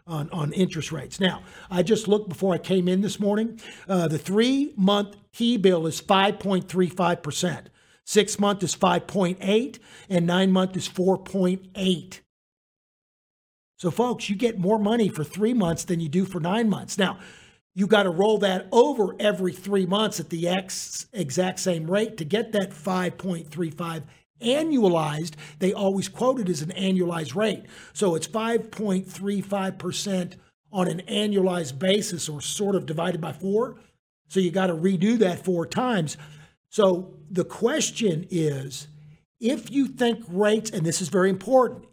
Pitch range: 175-215 Hz